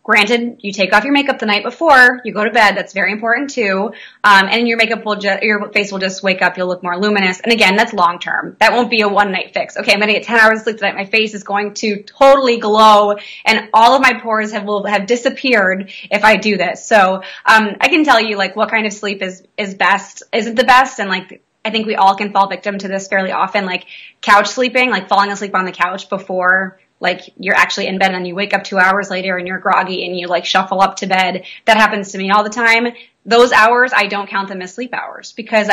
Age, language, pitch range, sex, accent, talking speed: 20-39, English, 190-220 Hz, female, American, 260 wpm